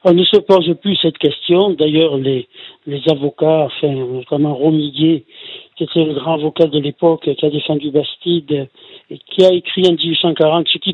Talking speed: 180 wpm